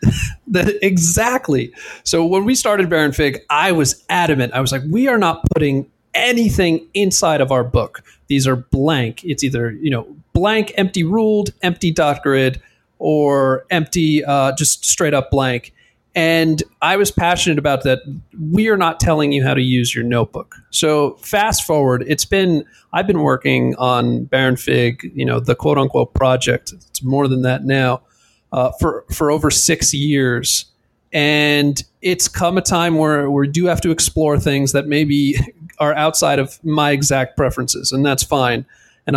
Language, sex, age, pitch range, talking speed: English, male, 40-59, 135-170 Hz, 170 wpm